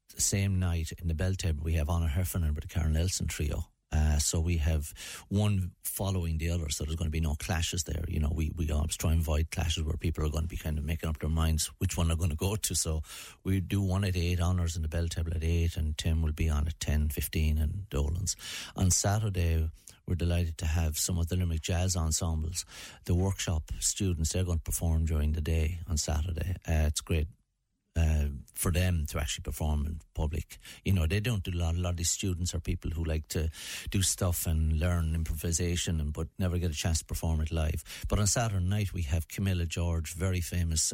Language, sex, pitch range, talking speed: English, male, 80-90 Hz, 235 wpm